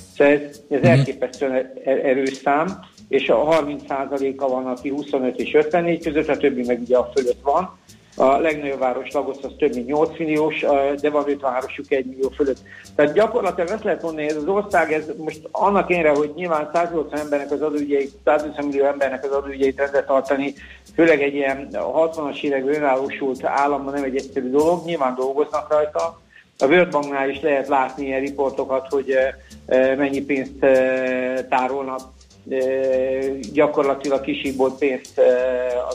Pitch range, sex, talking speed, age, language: 130-150 Hz, male, 155 wpm, 60-79, Hungarian